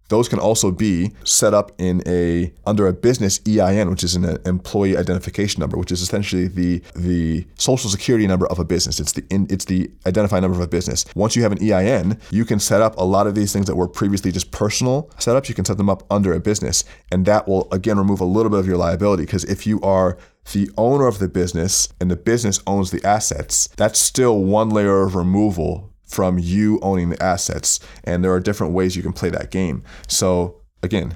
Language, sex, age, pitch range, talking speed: English, male, 20-39, 90-105 Hz, 225 wpm